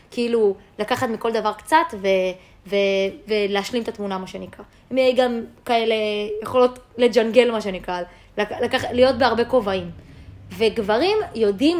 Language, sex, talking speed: Hebrew, female, 130 wpm